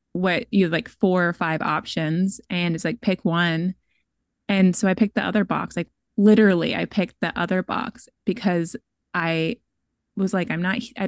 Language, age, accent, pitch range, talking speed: English, 20-39, American, 170-210 Hz, 185 wpm